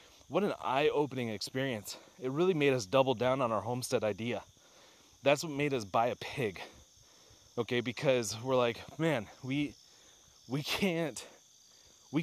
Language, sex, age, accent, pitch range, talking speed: English, male, 30-49, American, 115-145 Hz, 145 wpm